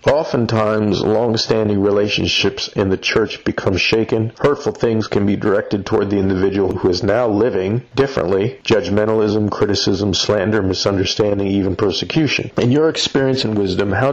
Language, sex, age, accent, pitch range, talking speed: English, male, 40-59, American, 95-110 Hz, 140 wpm